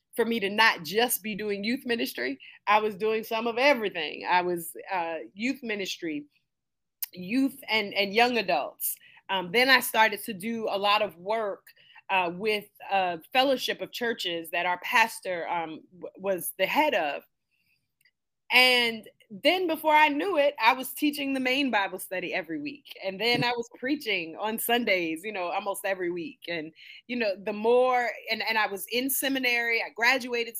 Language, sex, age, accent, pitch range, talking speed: English, female, 30-49, American, 200-255 Hz, 175 wpm